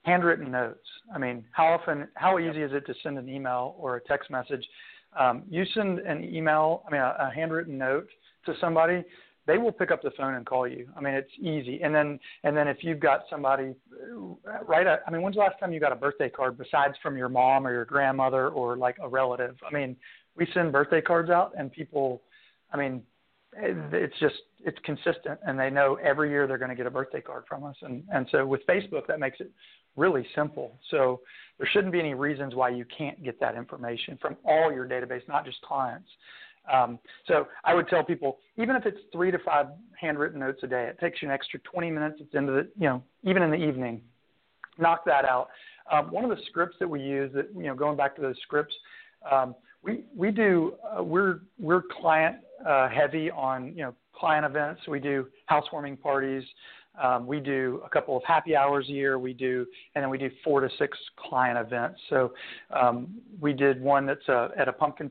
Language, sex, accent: English, male, American